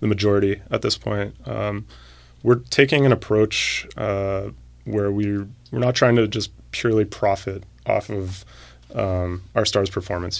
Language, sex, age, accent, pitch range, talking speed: English, male, 20-39, American, 95-110 Hz, 150 wpm